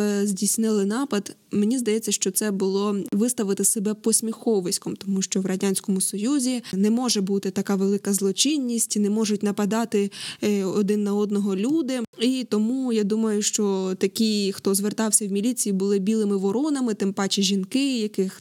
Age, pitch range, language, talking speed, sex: 20-39, 200-235 Hz, Ukrainian, 145 wpm, female